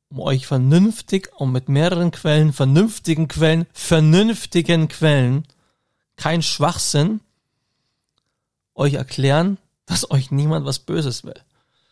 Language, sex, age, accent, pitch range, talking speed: German, male, 40-59, German, 135-165 Hz, 100 wpm